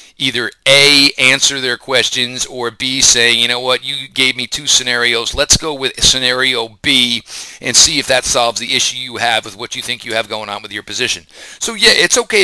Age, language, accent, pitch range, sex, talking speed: 40-59, English, American, 115-140 Hz, male, 215 wpm